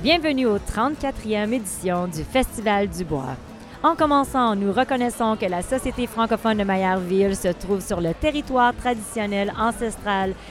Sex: female